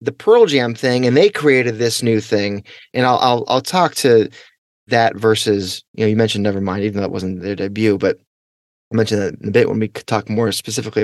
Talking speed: 230 wpm